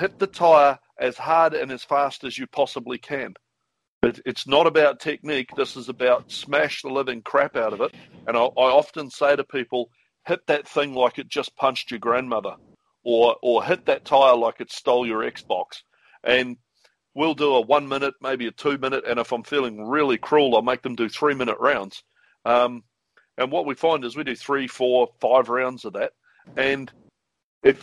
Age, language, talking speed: 40-59, English, 200 wpm